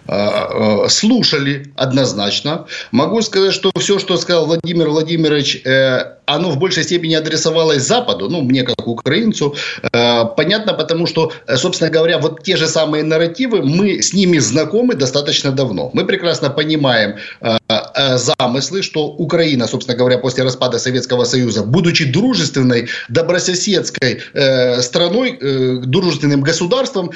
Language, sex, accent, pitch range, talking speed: Russian, male, native, 140-195 Hz, 120 wpm